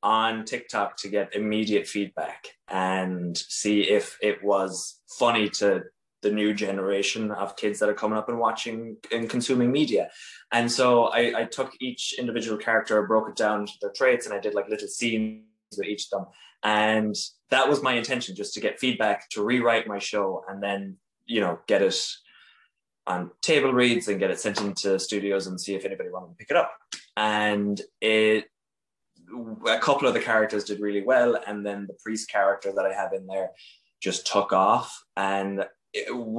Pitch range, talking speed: 100-125 Hz, 185 wpm